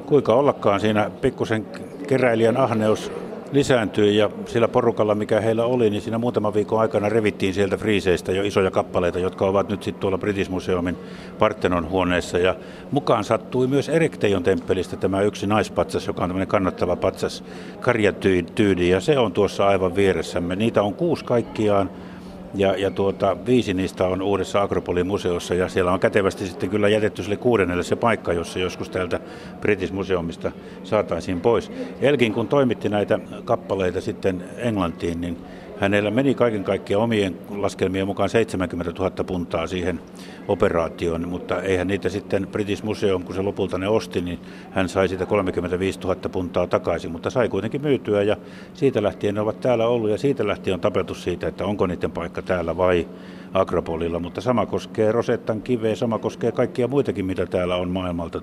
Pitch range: 90-110 Hz